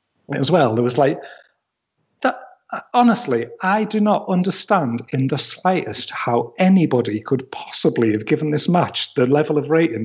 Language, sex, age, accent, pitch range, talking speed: English, male, 40-59, British, 120-170 Hz, 155 wpm